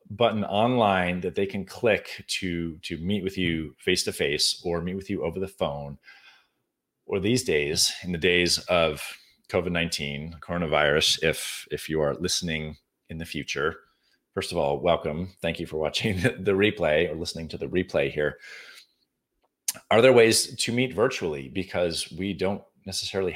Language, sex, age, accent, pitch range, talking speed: English, male, 30-49, American, 75-100 Hz, 160 wpm